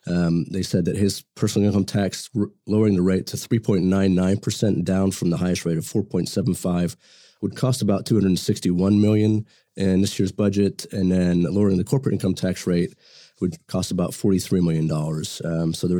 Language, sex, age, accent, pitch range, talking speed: English, male, 30-49, American, 90-105 Hz, 175 wpm